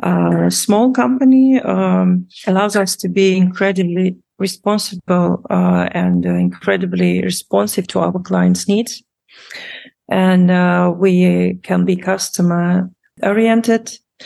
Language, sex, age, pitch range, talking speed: English, female, 40-59, 165-195 Hz, 115 wpm